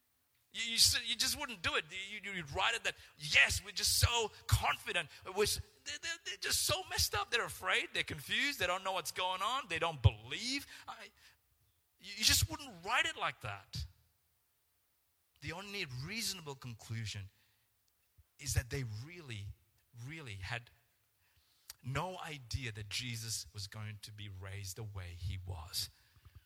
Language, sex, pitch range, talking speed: English, male, 95-120 Hz, 145 wpm